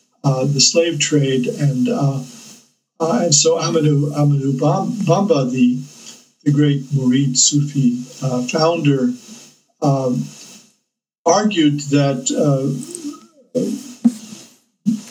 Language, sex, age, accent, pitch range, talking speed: English, male, 50-69, American, 135-185 Hz, 85 wpm